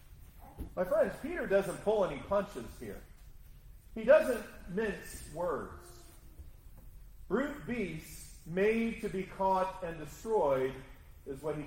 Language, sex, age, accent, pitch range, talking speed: English, male, 40-59, American, 175-250 Hz, 120 wpm